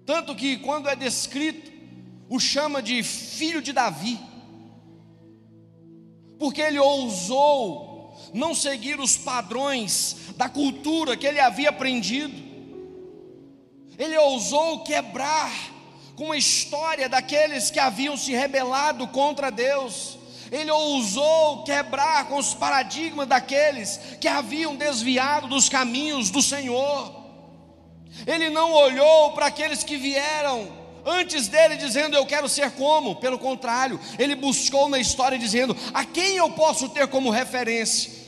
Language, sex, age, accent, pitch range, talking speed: Portuguese, male, 40-59, Brazilian, 225-290 Hz, 125 wpm